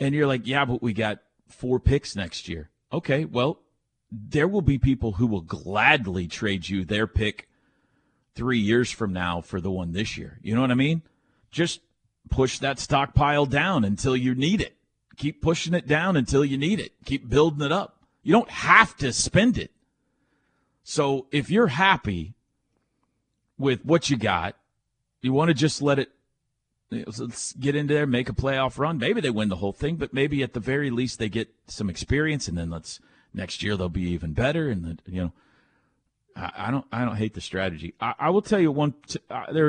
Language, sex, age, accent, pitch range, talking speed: English, male, 40-59, American, 105-145 Hz, 200 wpm